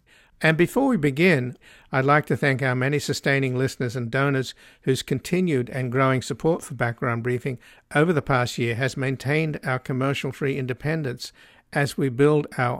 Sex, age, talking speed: male, 60-79, 170 wpm